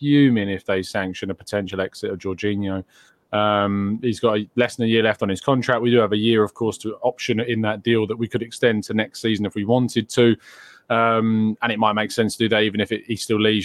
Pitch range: 105-120 Hz